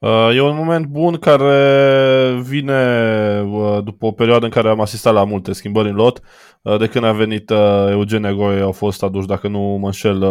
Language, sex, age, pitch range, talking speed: Romanian, male, 20-39, 100-115 Hz, 180 wpm